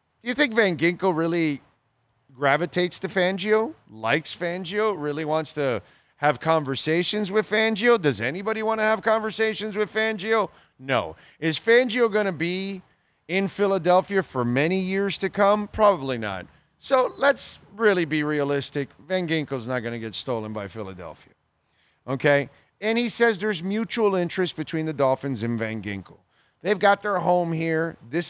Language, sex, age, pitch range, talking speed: English, male, 40-59, 125-195 Hz, 155 wpm